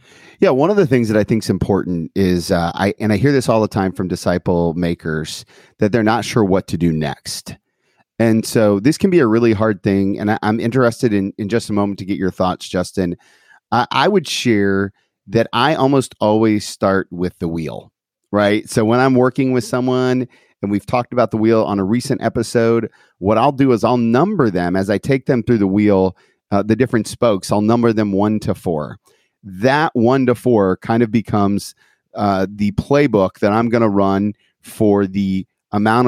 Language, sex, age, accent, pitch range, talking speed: English, male, 30-49, American, 100-120 Hz, 205 wpm